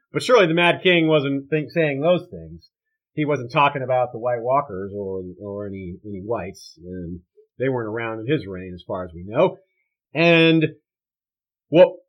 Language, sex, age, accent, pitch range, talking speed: English, male, 40-59, American, 120-155 Hz, 180 wpm